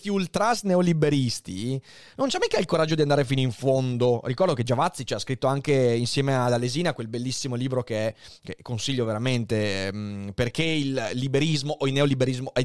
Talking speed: 170 wpm